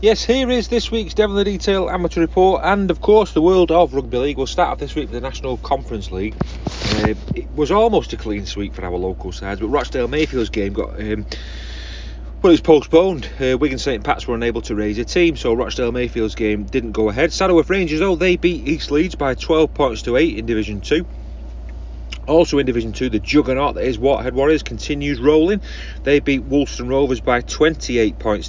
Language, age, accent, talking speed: English, 30-49, British, 205 wpm